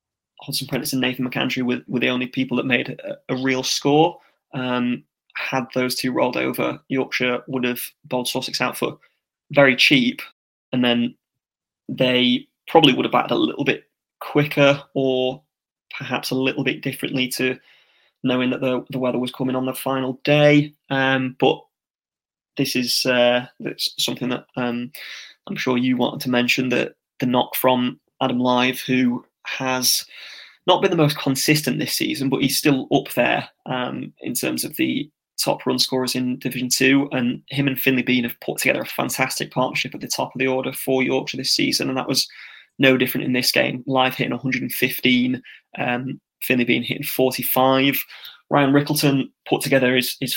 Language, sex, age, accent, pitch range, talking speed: English, male, 20-39, British, 125-135 Hz, 175 wpm